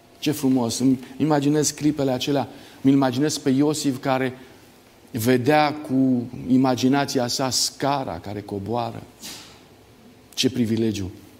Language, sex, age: Romanian, male, 50-69